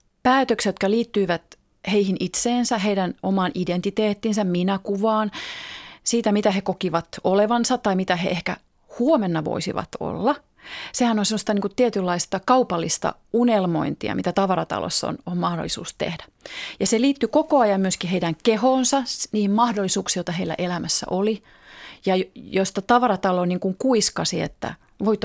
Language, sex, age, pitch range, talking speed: Finnish, female, 30-49, 180-230 Hz, 135 wpm